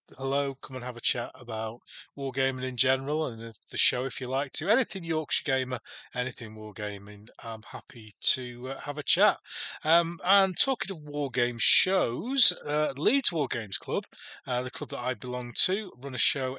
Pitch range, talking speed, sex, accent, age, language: 120-155 Hz, 175 wpm, male, British, 30-49, English